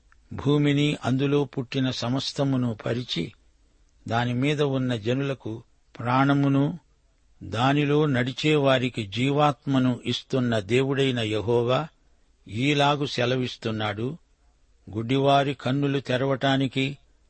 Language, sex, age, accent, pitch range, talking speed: Telugu, male, 60-79, native, 115-140 Hz, 70 wpm